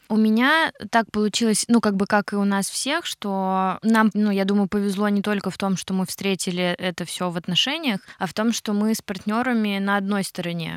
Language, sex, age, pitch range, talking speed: Russian, female, 20-39, 180-210 Hz, 215 wpm